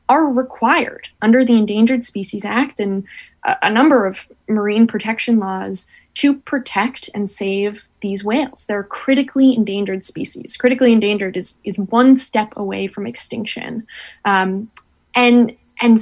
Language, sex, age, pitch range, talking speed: English, female, 20-39, 210-255 Hz, 140 wpm